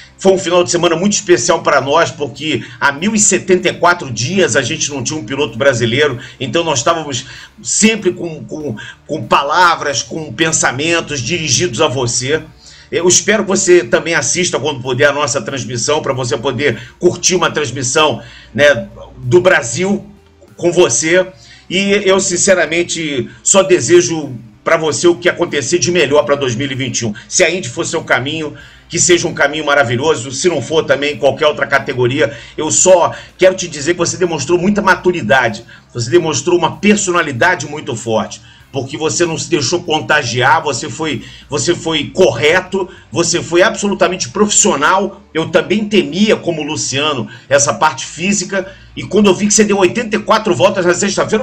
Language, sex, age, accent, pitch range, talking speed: Portuguese, male, 50-69, Brazilian, 140-185 Hz, 160 wpm